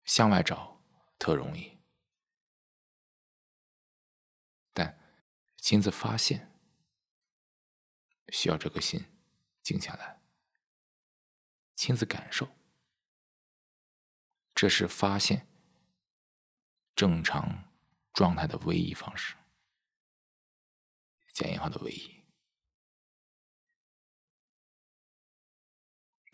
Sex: male